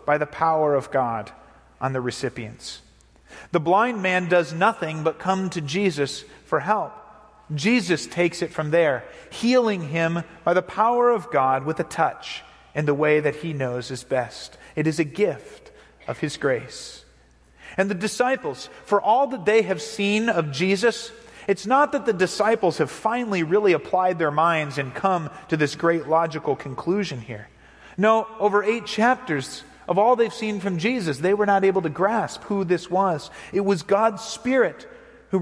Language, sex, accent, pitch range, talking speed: English, male, American, 145-210 Hz, 175 wpm